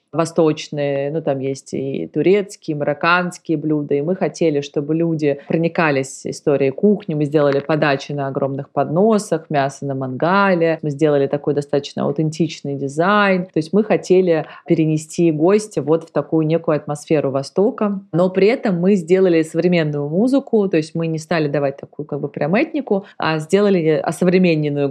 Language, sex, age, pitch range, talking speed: Russian, female, 30-49, 155-185 Hz, 155 wpm